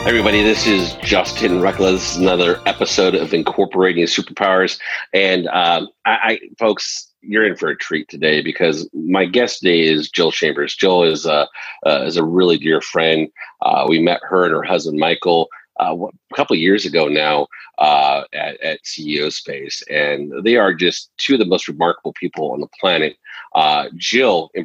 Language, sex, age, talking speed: English, male, 40-59, 185 wpm